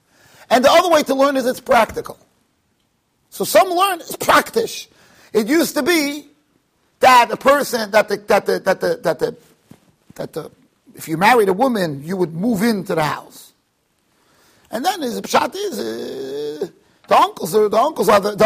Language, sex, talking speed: English, male, 170 wpm